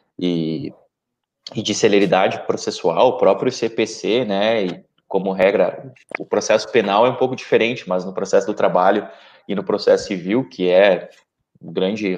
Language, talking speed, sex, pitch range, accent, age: Portuguese, 165 wpm, male, 95-125 Hz, Brazilian, 20-39